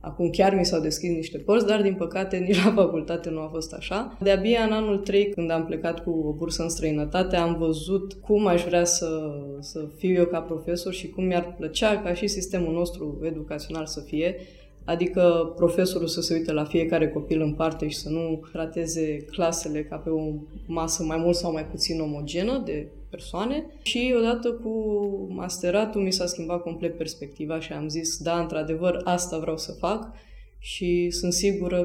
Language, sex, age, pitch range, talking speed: Romanian, female, 20-39, 160-200 Hz, 185 wpm